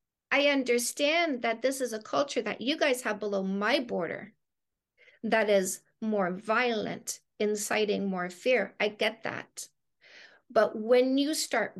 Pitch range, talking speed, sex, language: 195-245 Hz, 140 wpm, female, English